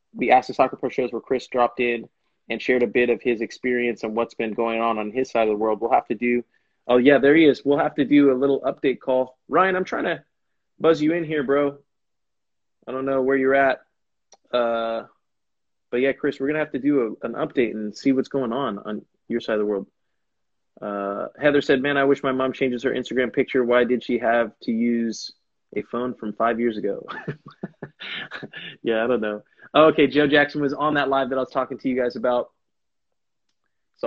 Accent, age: American, 20-39